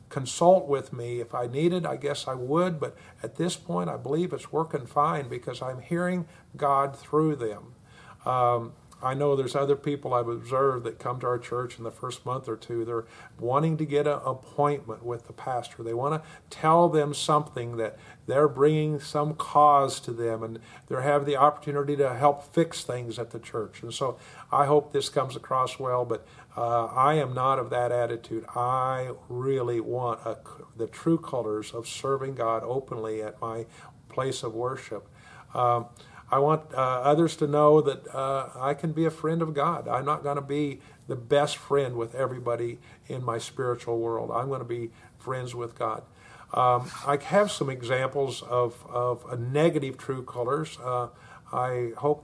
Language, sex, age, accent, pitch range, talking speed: English, male, 50-69, American, 120-145 Hz, 185 wpm